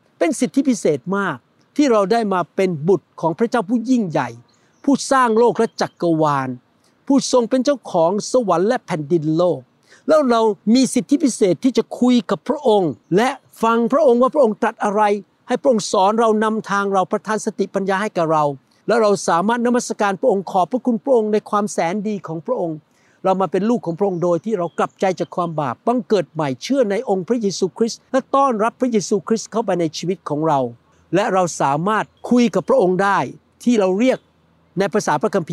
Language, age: Thai, 60-79